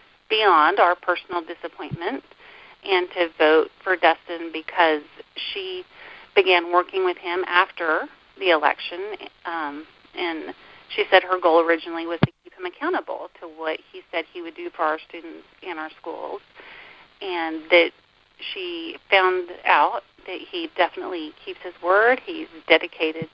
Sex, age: female, 40-59